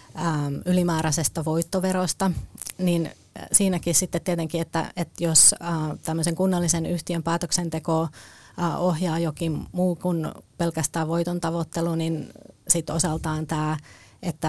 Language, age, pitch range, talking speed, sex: Finnish, 30-49, 155-175 Hz, 105 wpm, female